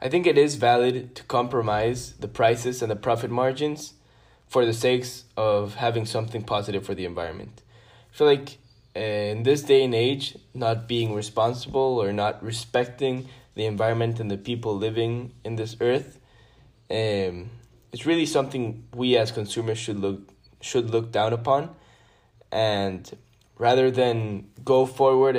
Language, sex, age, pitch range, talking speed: English, male, 10-29, 110-130 Hz, 150 wpm